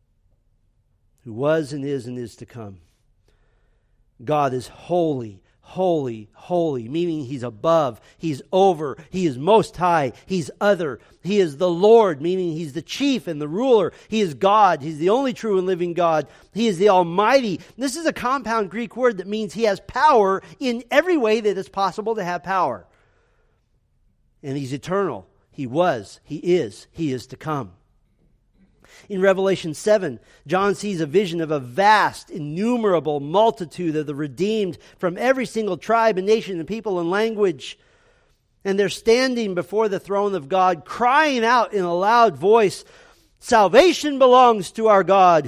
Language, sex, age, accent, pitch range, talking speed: English, male, 50-69, American, 155-215 Hz, 165 wpm